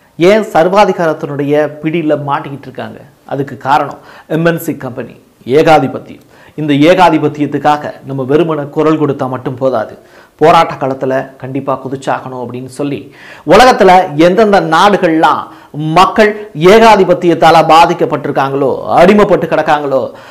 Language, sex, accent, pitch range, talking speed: Tamil, male, native, 145-175 Hz, 85 wpm